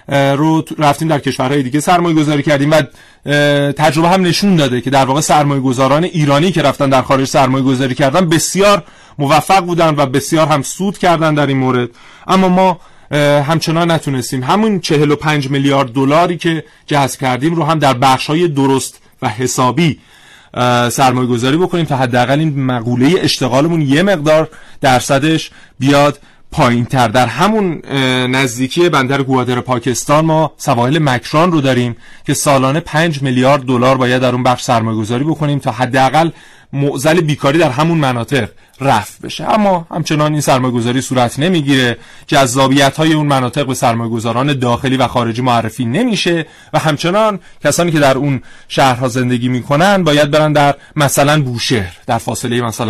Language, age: Persian, 30-49